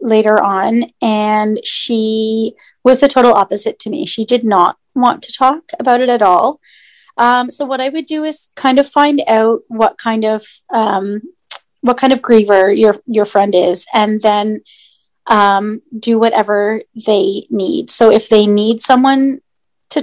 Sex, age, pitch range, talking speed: female, 30-49, 215-250 Hz, 170 wpm